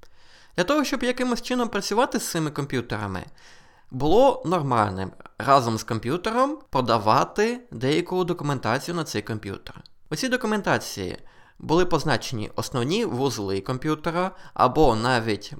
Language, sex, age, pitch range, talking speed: Ukrainian, male, 20-39, 110-180 Hz, 115 wpm